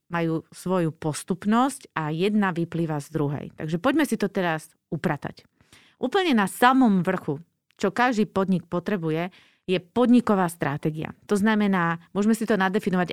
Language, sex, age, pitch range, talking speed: Slovak, female, 30-49, 170-225 Hz, 140 wpm